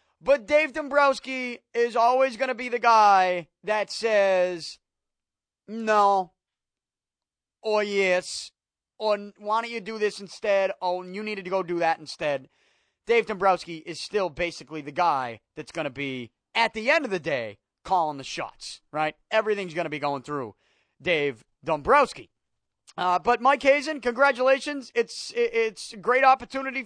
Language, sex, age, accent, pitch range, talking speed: English, male, 30-49, American, 185-225 Hz, 155 wpm